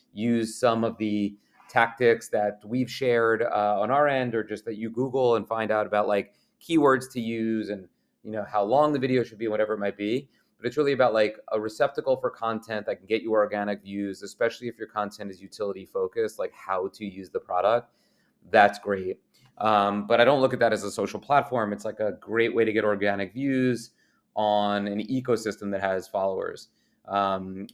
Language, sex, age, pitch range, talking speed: English, male, 30-49, 100-120 Hz, 205 wpm